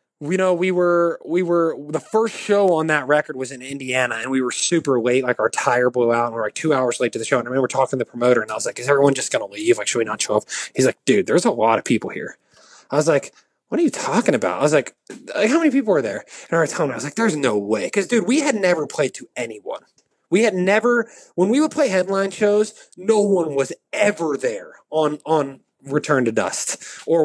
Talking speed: 270 wpm